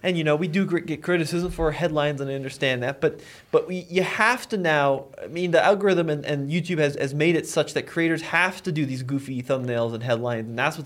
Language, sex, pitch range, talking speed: English, male, 135-180 Hz, 250 wpm